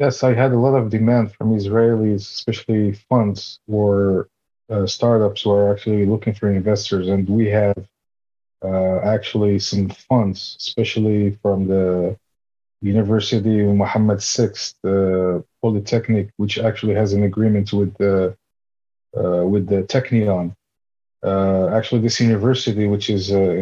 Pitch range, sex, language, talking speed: 95-115 Hz, male, English, 135 wpm